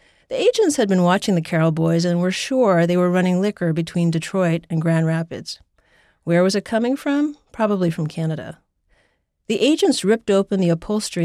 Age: 40-59